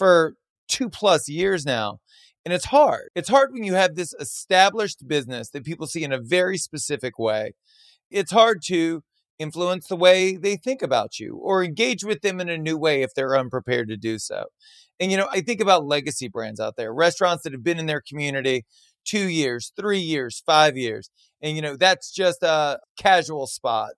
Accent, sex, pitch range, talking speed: American, male, 130-185 Hz, 200 wpm